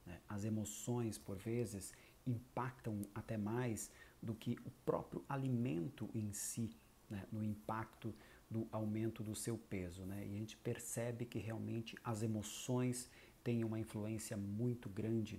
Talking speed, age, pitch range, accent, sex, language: 145 wpm, 50-69, 105-125 Hz, Brazilian, male, Portuguese